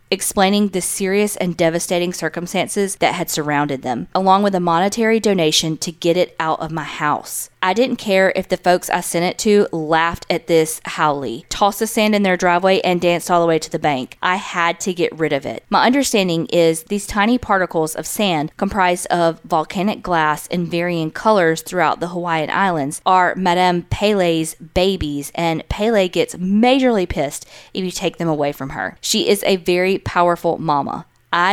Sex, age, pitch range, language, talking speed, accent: female, 20-39, 160-195 Hz, English, 190 wpm, American